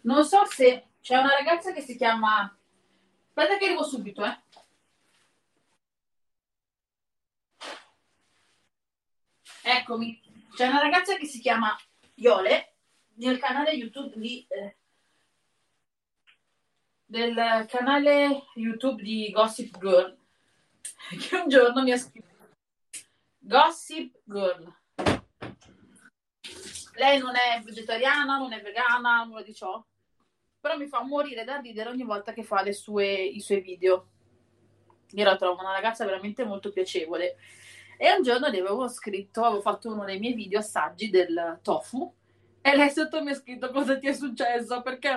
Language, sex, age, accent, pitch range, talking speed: Italian, female, 30-49, native, 200-280 Hz, 135 wpm